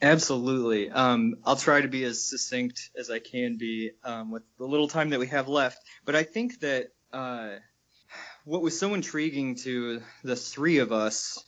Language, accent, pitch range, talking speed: English, American, 115-140 Hz, 185 wpm